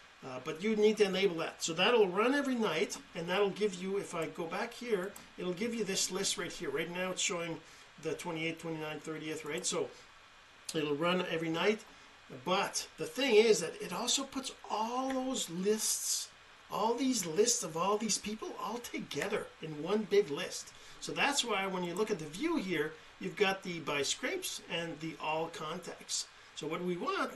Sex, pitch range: male, 165-215 Hz